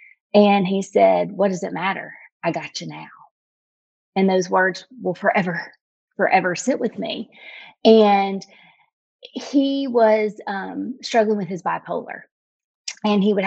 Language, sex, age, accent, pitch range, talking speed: English, female, 30-49, American, 185-220 Hz, 140 wpm